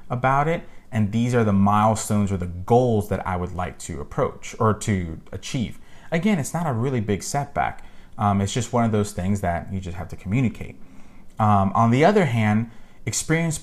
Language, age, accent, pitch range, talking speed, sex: English, 30-49, American, 95-115 Hz, 200 wpm, male